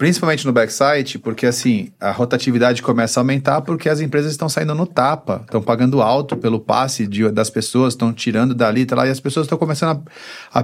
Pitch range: 120-160 Hz